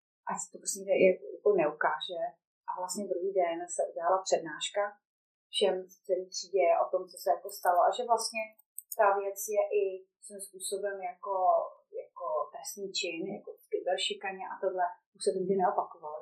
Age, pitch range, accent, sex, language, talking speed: 30-49, 195-245 Hz, native, female, Czech, 155 wpm